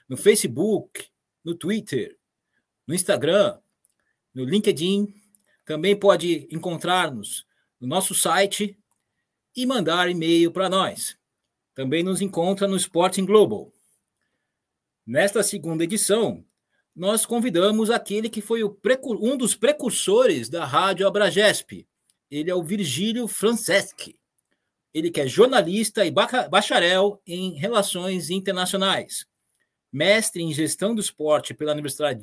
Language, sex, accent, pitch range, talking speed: Portuguese, male, Brazilian, 175-220 Hz, 110 wpm